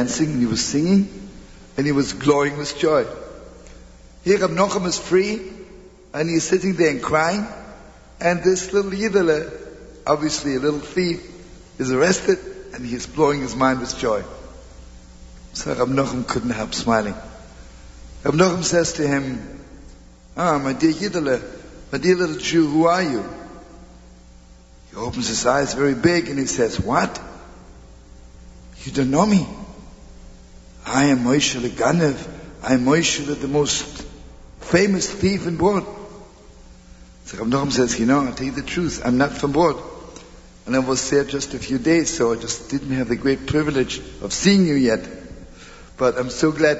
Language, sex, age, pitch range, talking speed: English, male, 60-79, 100-165 Hz, 160 wpm